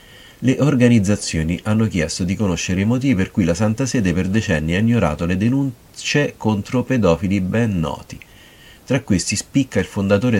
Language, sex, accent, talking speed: Italian, male, native, 160 wpm